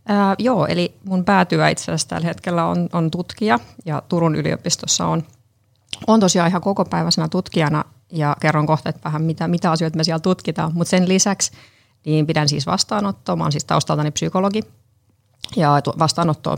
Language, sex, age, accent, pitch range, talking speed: Finnish, female, 30-49, native, 150-170 Hz, 165 wpm